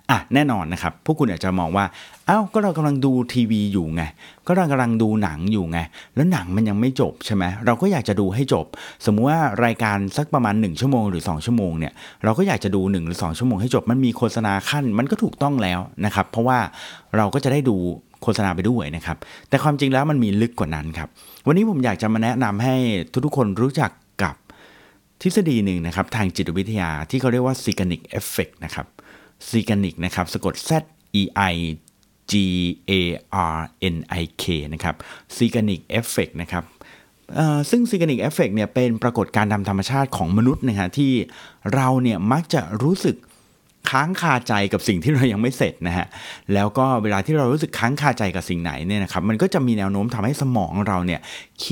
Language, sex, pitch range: Thai, male, 95-130 Hz